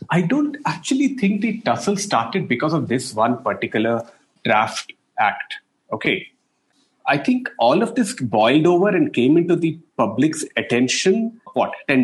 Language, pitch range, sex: English, 120-185 Hz, male